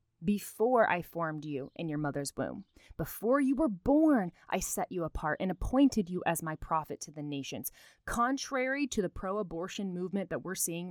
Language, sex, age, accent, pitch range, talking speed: English, female, 20-39, American, 165-210 Hz, 180 wpm